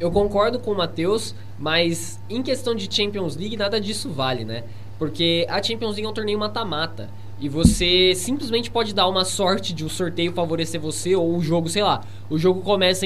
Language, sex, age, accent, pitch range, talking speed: Portuguese, male, 20-39, Brazilian, 155-215 Hz, 200 wpm